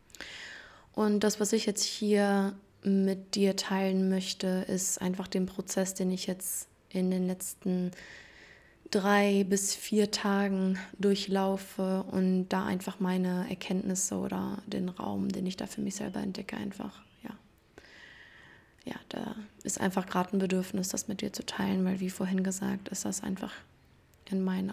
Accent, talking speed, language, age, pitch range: German, 155 wpm, German, 20-39, 190-205 Hz